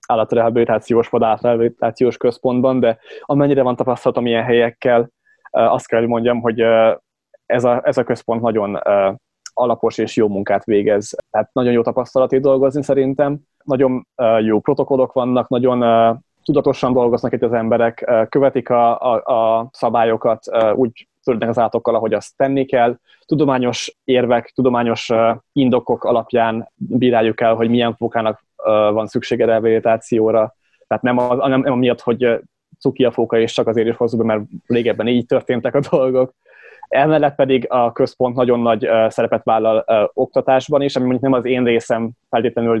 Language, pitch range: Hungarian, 115-130 Hz